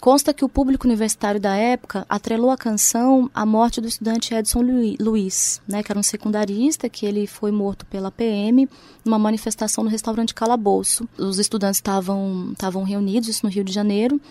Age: 20-39